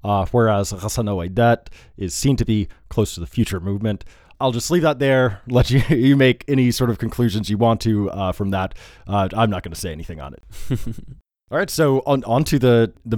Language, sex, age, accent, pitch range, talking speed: English, male, 20-39, American, 100-125 Hz, 215 wpm